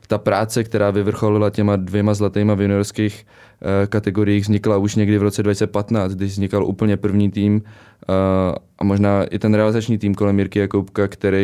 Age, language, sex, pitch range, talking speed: 20-39, Czech, male, 100-110 Hz, 165 wpm